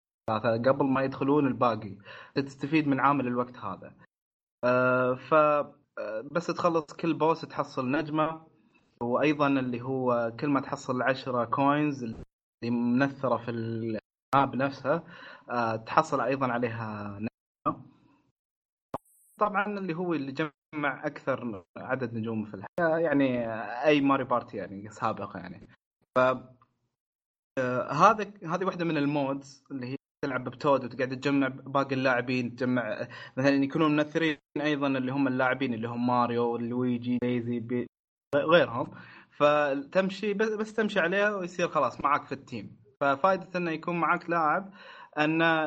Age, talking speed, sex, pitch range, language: 20-39, 120 wpm, male, 120-150 Hz, Arabic